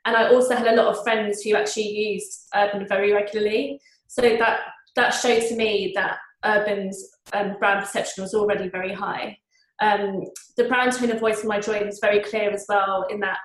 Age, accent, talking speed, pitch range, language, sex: 20-39, British, 200 wpm, 195-225 Hz, English, female